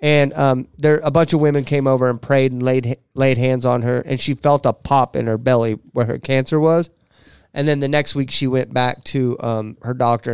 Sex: male